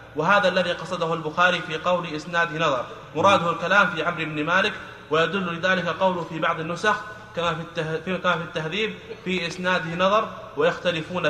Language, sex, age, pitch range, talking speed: Arabic, male, 30-49, 160-185 Hz, 150 wpm